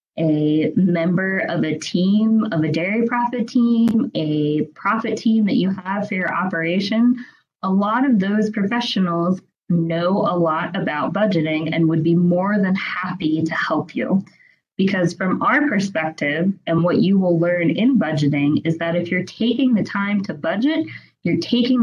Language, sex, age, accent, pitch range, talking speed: English, female, 20-39, American, 165-220 Hz, 165 wpm